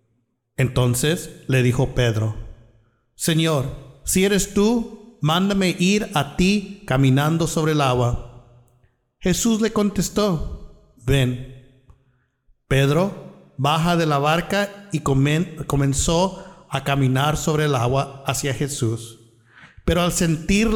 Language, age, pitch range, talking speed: Spanish, 50-69, 125-175 Hz, 105 wpm